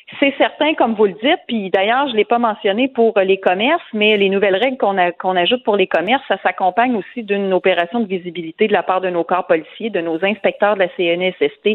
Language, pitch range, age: French, 175-220 Hz, 40-59